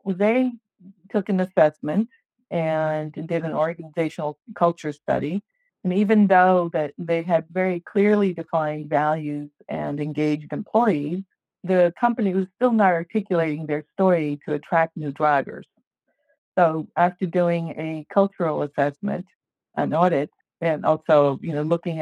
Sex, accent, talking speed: female, American, 130 wpm